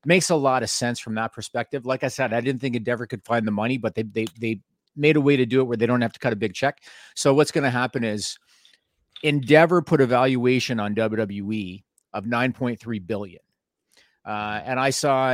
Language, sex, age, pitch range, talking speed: English, male, 40-59, 110-130 Hz, 230 wpm